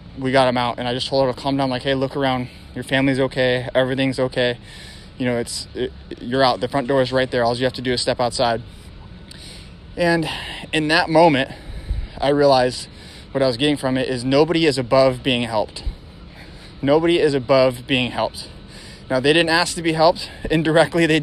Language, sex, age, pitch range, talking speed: English, male, 20-39, 130-150 Hz, 205 wpm